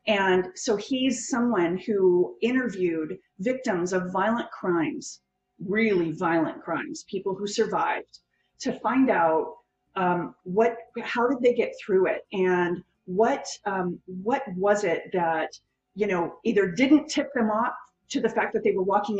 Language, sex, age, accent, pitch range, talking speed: English, female, 30-49, American, 185-230 Hz, 150 wpm